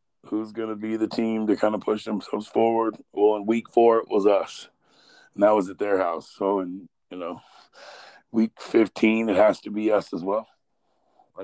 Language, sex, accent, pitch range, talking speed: English, male, American, 105-125 Hz, 205 wpm